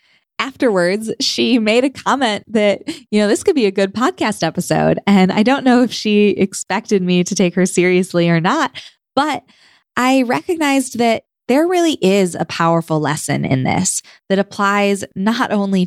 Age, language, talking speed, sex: 20-39, English, 170 wpm, female